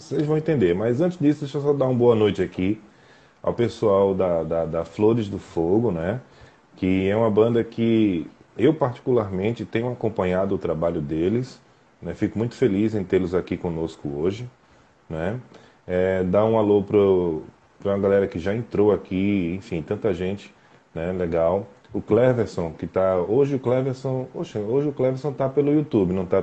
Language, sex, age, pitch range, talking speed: Portuguese, male, 20-39, 95-125 Hz, 175 wpm